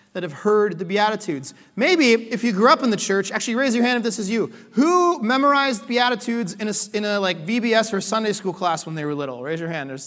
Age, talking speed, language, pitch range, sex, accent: 30-49, 245 wpm, English, 170-225 Hz, male, American